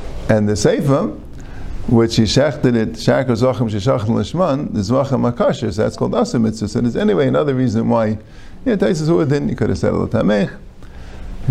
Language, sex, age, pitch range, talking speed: English, male, 50-69, 110-145 Hz, 175 wpm